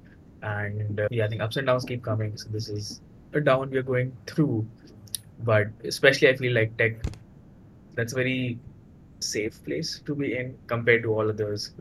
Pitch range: 105-125 Hz